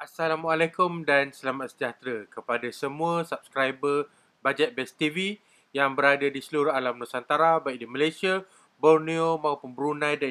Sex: male